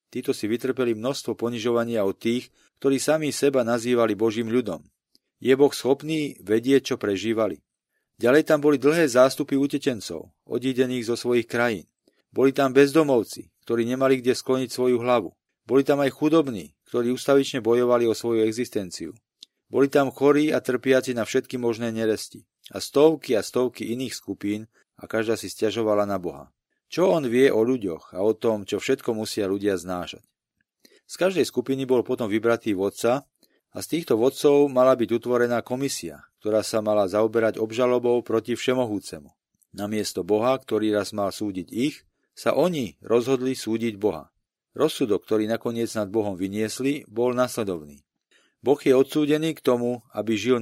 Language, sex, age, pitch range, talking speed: Slovak, male, 40-59, 110-130 Hz, 155 wpm